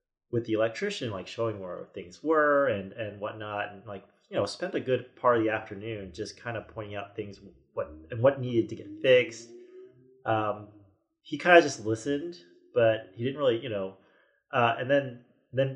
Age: 30-49